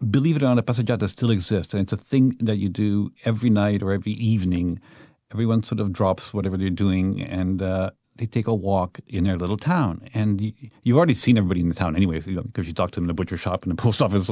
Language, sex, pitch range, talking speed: English, male, 95-120 Hz, 255 wpm